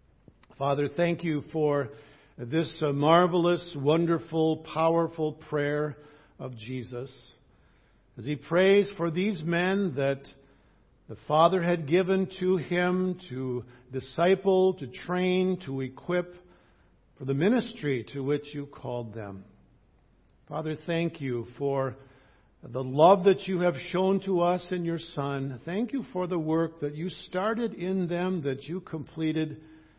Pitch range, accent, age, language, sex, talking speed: 135-180 Hz, American, 60-79, English, male, 130 wpm